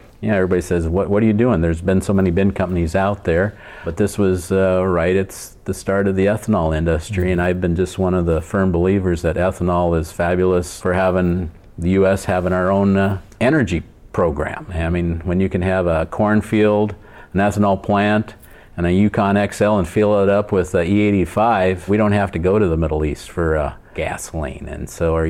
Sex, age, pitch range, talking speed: male, 50-69, 85-100 Hz, 205 wpm